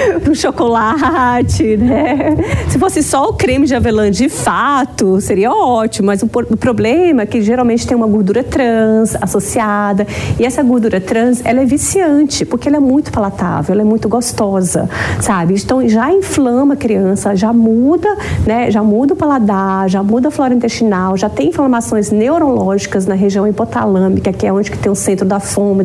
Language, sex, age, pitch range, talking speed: Portuguese, female, 40-59, 205-265 Hz, 175 wpm